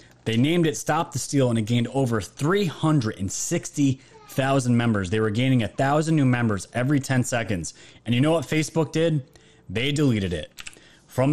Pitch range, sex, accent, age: 110-145 Hz, male, American, 30-49